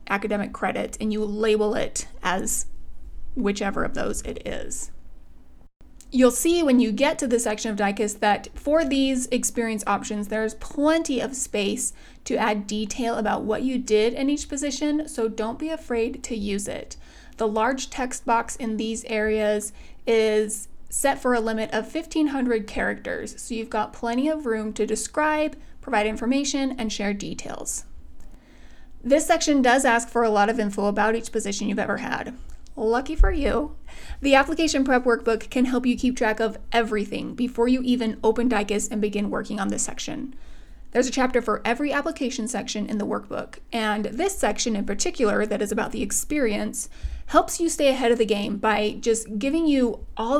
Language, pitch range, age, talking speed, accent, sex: English, 215-260 Hz, 30-49, 175 wpm, American, female